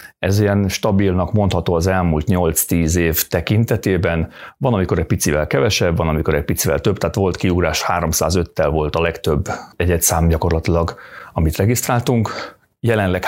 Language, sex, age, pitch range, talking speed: Hungarian, male, 40-59, 80-105 Hz, 145 wpm